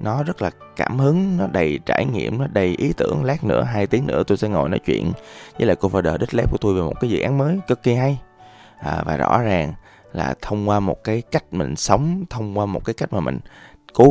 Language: Vietnamese